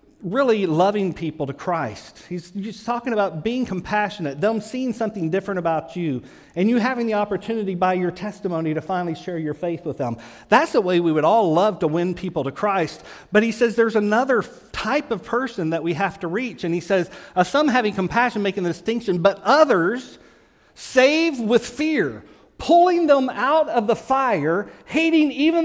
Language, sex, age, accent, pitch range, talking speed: English, male, 50-69, American, 170-250 Hz, 185 wpm